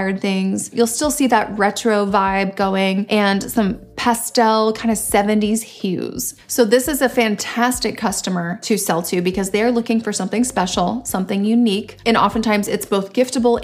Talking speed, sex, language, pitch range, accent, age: 165 wpm, female, English, 195-235 Hz, American, 30-49